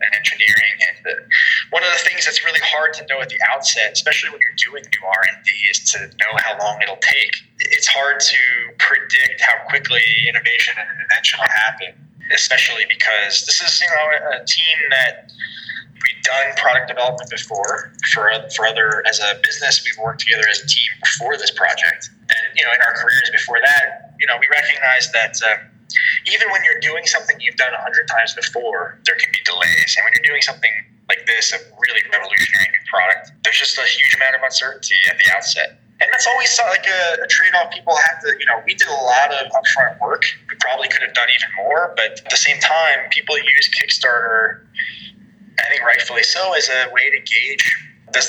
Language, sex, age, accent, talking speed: English, male, 20-39, American, 205 wpm